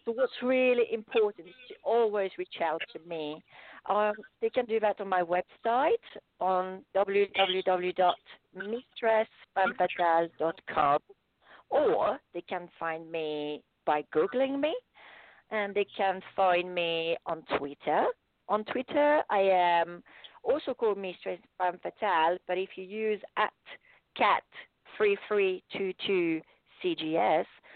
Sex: female